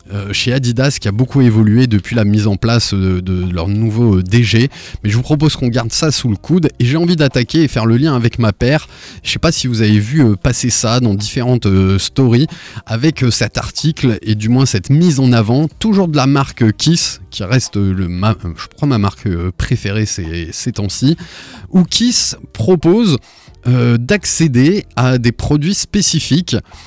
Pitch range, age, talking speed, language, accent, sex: 110-145 Hz, 20-39, 190 wpm, French, French, male